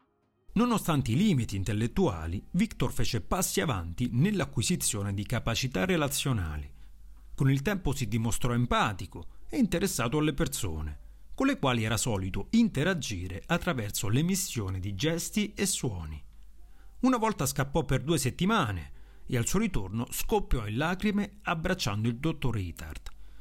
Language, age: Italian, 40-59